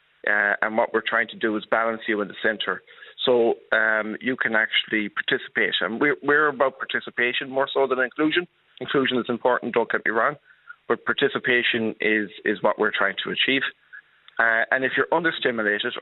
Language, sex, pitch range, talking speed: English, male, 105-120 Hz, 185 wpm